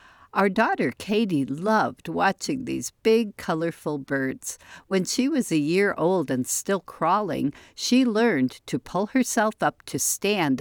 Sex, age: female, 60-79